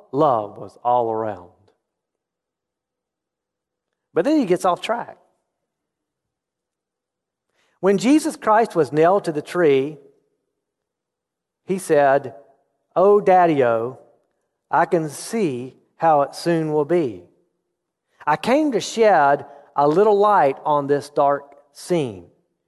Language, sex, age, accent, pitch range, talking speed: English, male, 40-59, American, 130-180 Hz, 110 wpm